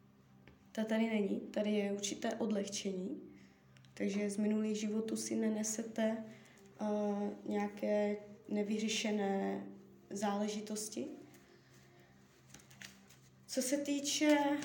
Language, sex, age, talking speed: Czech, female, 20-39, 80 wpm